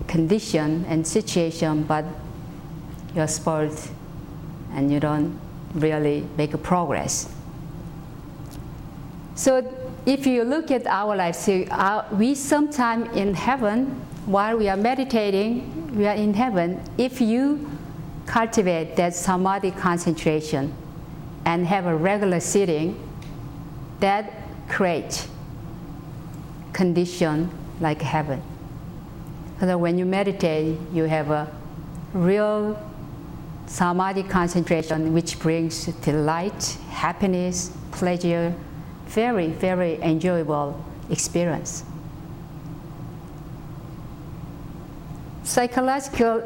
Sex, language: female, English